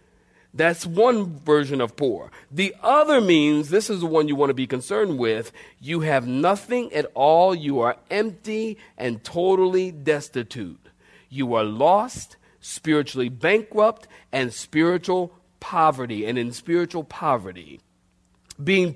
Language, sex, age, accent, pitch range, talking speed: English, male, 50-69, American, 115-170 Hz, 135 wpm